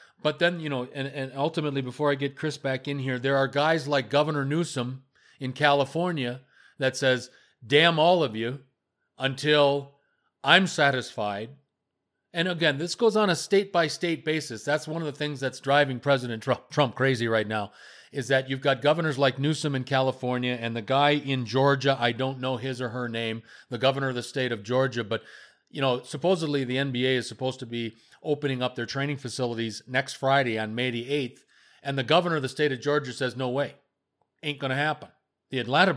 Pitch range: 125-150 Hz